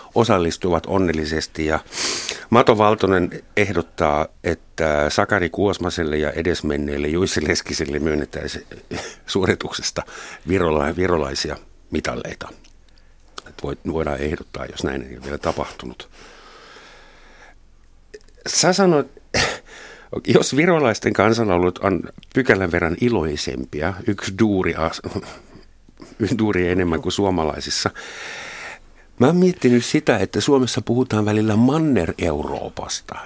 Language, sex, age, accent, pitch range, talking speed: Finnish, male, 60-79, native, 80-110 Hz, 90 wpm